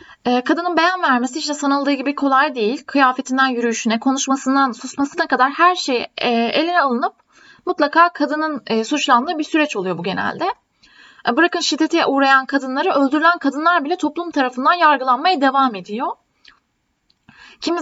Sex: female